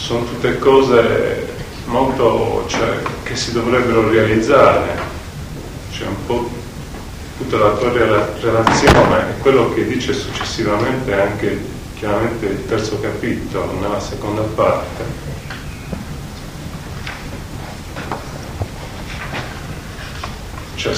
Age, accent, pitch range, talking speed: 40-59, native, 100-120 Hz, 90 wpm